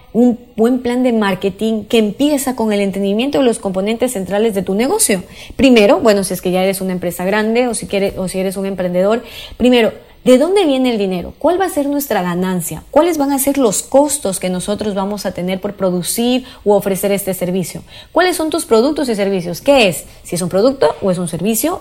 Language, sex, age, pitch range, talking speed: Spanish, female, 30-49, 185-245 Hz, 215 wpm